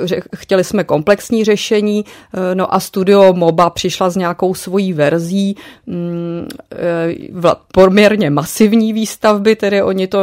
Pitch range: 170-200 Hz